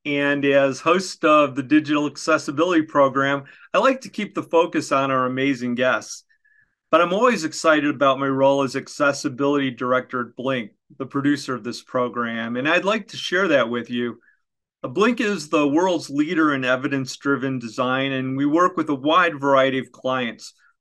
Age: 40-59